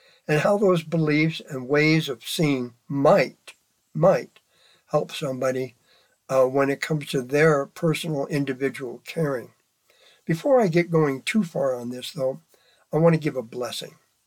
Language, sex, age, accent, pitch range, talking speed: English, male, 60-79, American, 140-180 Hz, 150 wpm